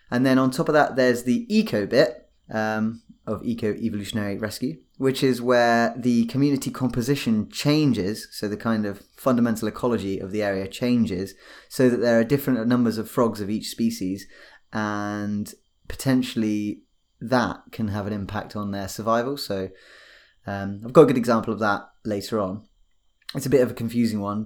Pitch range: 105-125 Hz